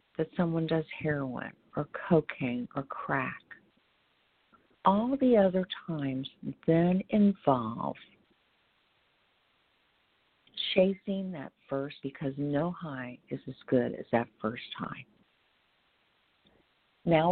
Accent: American